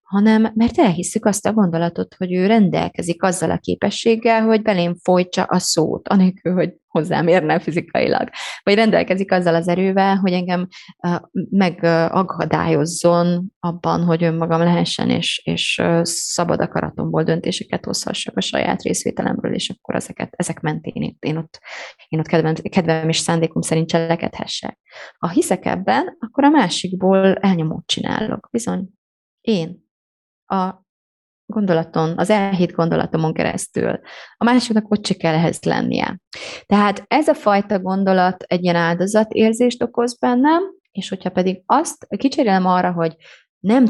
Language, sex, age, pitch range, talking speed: Hungarian, female, 20-39, 170-210 Hz, 135 wpm